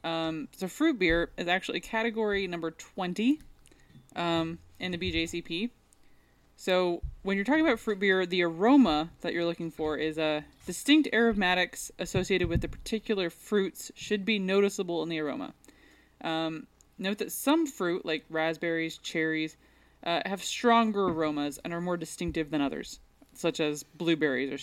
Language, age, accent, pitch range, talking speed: English, 20-39, American, 160-200 Hz, 155 wpm